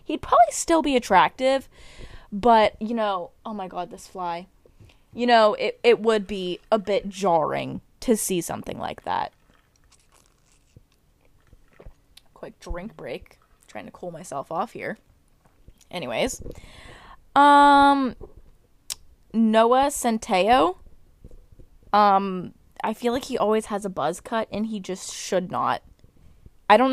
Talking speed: 125 wpm